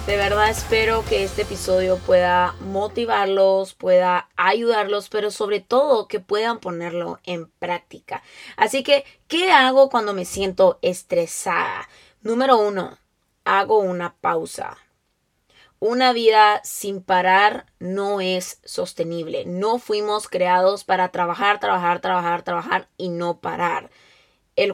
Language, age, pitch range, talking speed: Spanish, 20-39, 180-230 Hz, 120 wpm